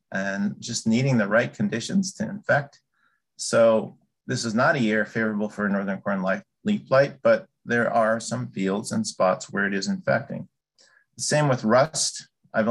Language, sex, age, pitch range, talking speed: English, male, 50-69, 110-135 Hz, 170 wpm